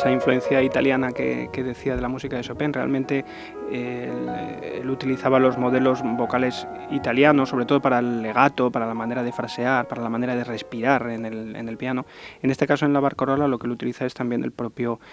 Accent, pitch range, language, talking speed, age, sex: Spanish, 115-135 Hz, Spanish, 215 wpm, 20-39, male